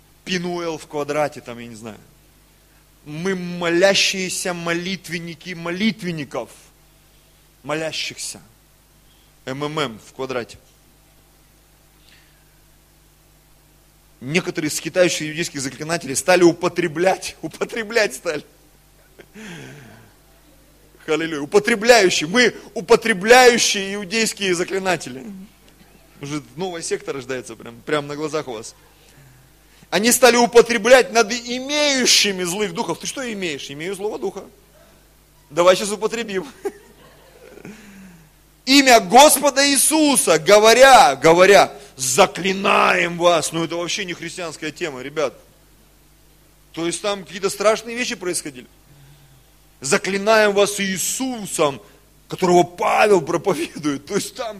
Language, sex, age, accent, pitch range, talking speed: Russian, male, 30-49, native, 155-215 Hz, 95 wpm